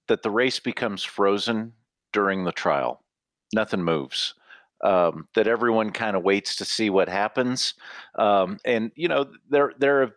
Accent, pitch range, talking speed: American, 95-115 Hz, 160 wpm